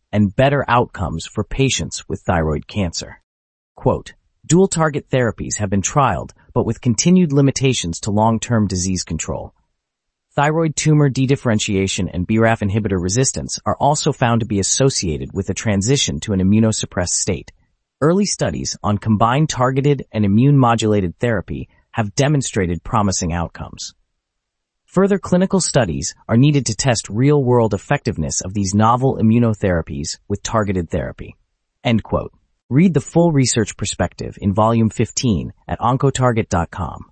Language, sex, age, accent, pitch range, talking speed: English, male, 30-49, American, 95-130 Hz, 135 wpm